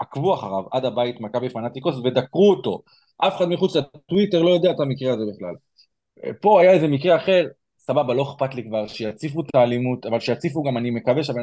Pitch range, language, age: 125-185 Hz, Hebrew, 20-39